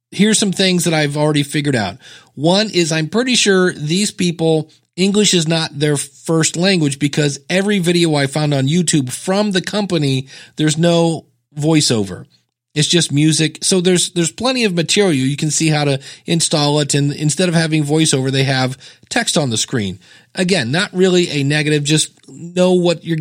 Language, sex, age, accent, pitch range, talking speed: English, male, 30-49, American, 140-180 Hz, 180 wpm